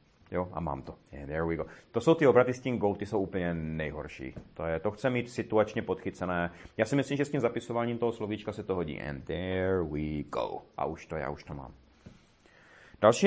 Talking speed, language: 225 wpm, Czech